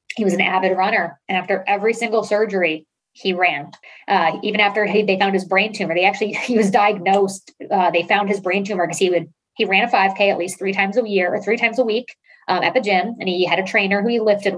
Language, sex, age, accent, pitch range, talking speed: English, female, 20-39, American, 180-210 Hz, 255 wpm